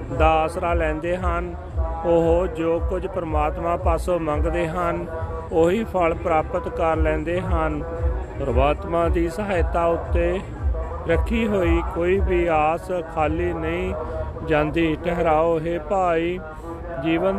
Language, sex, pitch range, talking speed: Punjabi, male, 155-180 Hz, 110 wpm